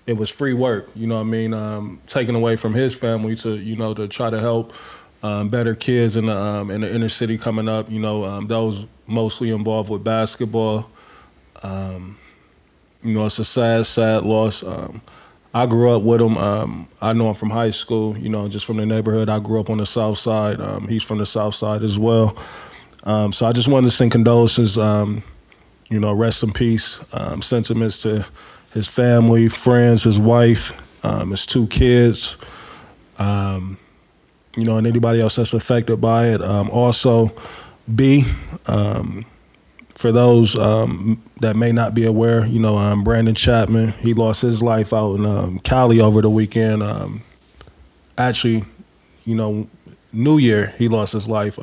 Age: 20-39